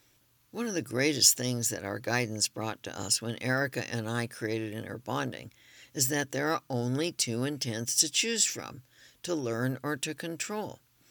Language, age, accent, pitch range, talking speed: English, 60-79, American, 120-150 Hz, 180 wpm